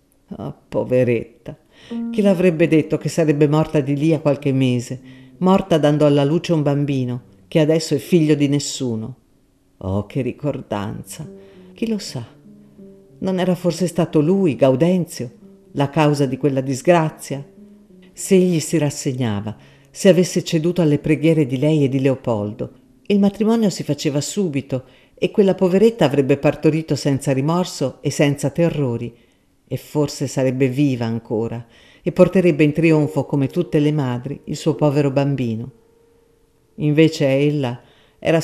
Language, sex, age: Italian, female, 50-69